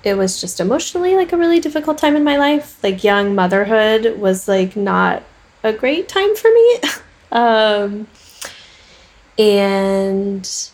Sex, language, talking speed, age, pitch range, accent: female, English, 140 wpm, 10-29, 190-250 Hz, American